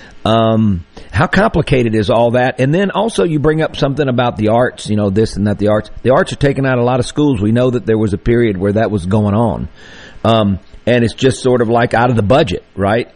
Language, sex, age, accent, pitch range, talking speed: English, male, 50-69, American, 105-130 Hz, 255 wpm